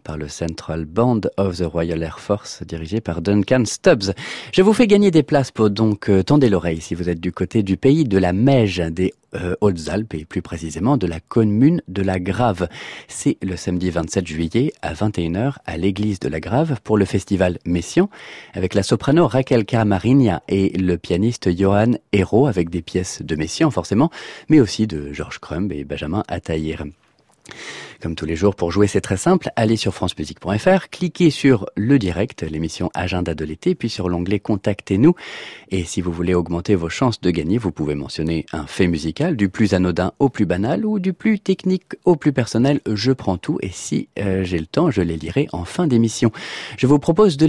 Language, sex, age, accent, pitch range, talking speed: French, male, 30-49, French, 85-125 Hz, 200 wpm